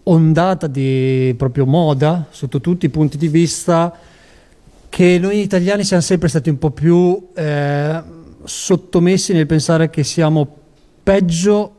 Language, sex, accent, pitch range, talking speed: Italian, male, native, 140-170 Hz, 130 wpm